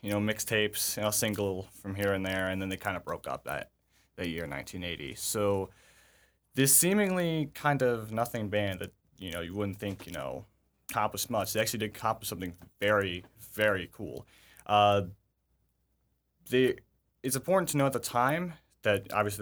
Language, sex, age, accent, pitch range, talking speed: English, male, 20-39, American, 95-110 Hz, 180 wpm